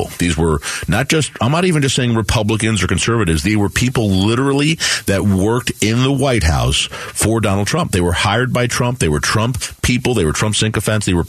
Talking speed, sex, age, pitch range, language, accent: 215 wpm, male, 40-59, 95-120 Hz, English, American